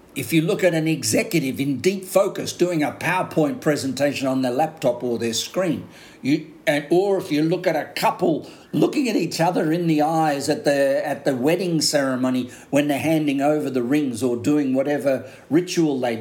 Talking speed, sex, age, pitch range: 190 wpm, male, 50-69, 135-170 Hz